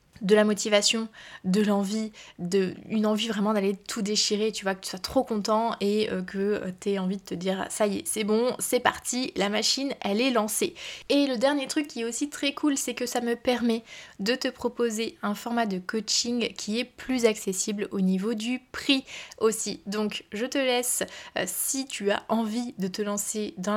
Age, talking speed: 20-39, 205 wpm